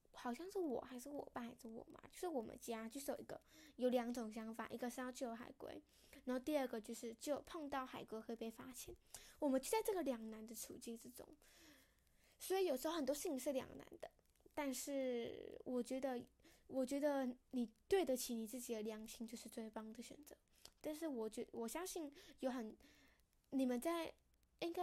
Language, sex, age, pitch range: English, female, 10-29, 235-305 Hz